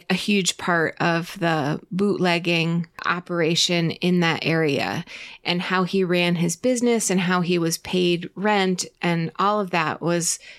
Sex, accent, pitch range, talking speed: female, American, 175-195 Hz, 155 wpm